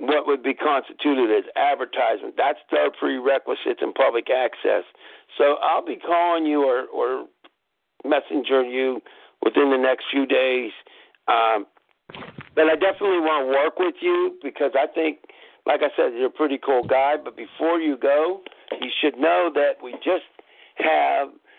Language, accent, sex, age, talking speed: English, American, male, 60-79, 160 wpm